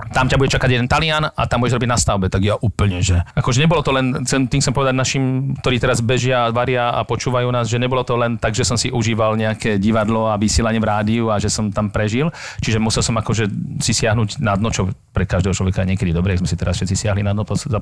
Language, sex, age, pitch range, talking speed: Slovak, male, 40-59, 110-145 Hz, 255 wpm